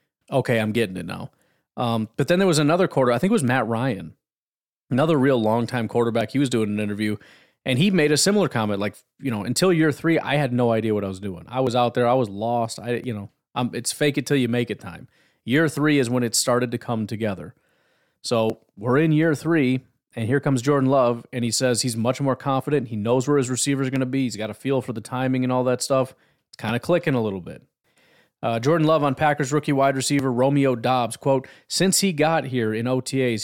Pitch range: 115-140 Hz